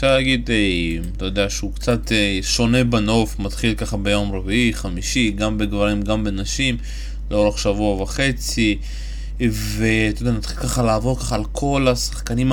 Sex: male